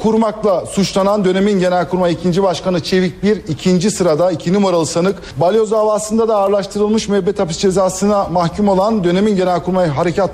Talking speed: 155 wpm